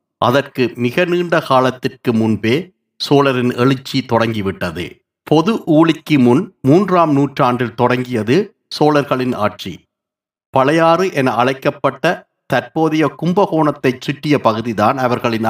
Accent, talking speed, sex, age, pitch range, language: native, 95 wpm, male, 50-69, 120-155 Hz, Tamil